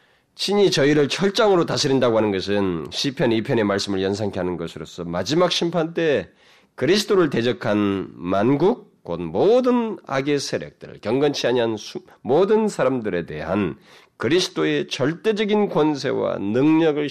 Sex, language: male, Korean